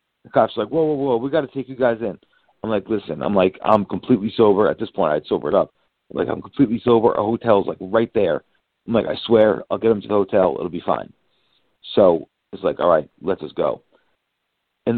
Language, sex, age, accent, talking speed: English, male, 40-59, American, 240 wpm